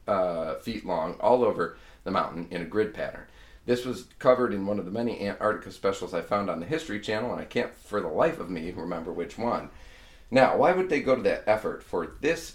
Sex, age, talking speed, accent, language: male, 40-59, 225 wpm, American, English